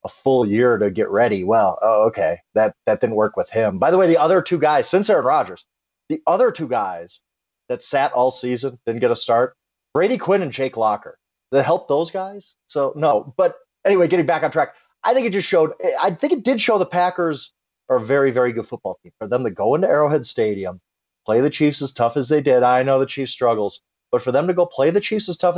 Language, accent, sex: English, American, male